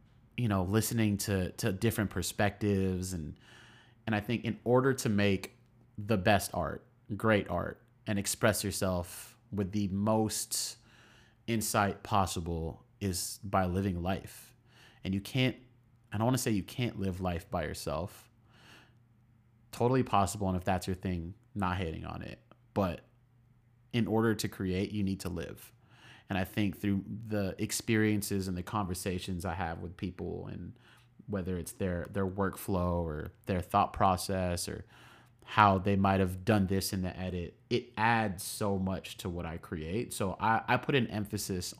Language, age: English, 30-49